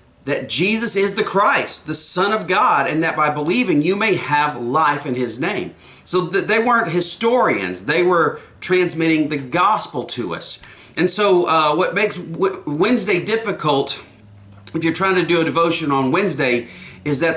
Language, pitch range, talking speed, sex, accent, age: English, 140-195 Hz, 170 wpm, male, American, 30-49